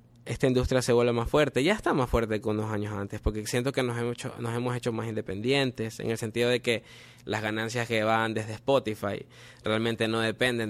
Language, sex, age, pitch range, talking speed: Spanish, male, 20-39, 110-125 Hz, 210 wpm